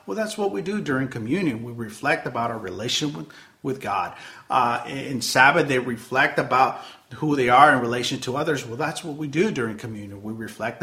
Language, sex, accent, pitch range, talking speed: English, male, American, 120-160 Hz, 200 wpm